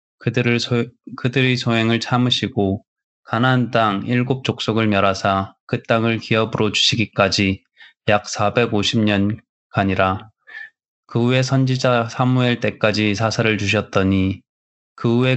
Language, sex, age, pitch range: Korean, male, 20-39, 100-120 Hz